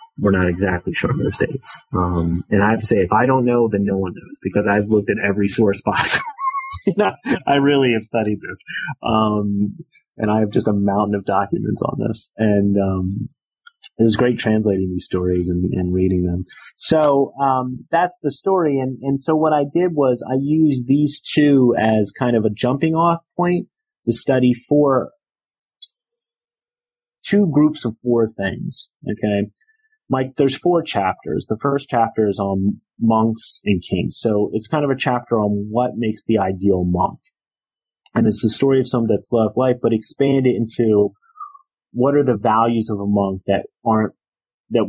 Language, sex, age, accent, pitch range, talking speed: English, male, 30-49, American, 100-135 Hz, 185 wpm